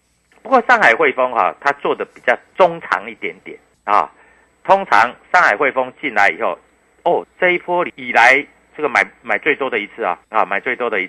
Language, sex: Chinese, male